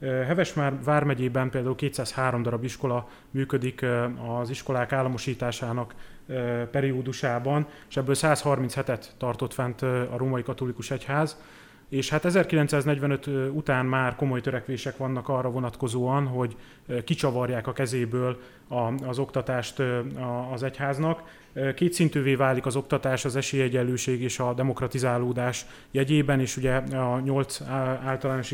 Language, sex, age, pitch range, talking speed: Hungarian, male, 30-49, 125-140 Hz, 115 wpm